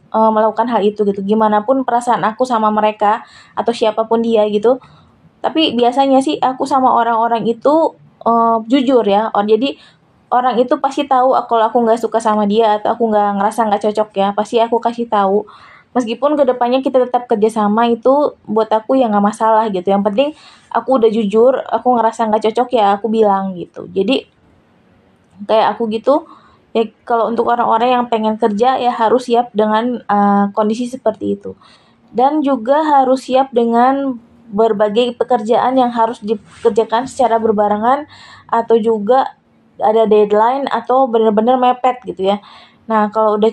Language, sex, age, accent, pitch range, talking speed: Indonesian, female, 20-39, native, 215-250 Hz, 160 wpm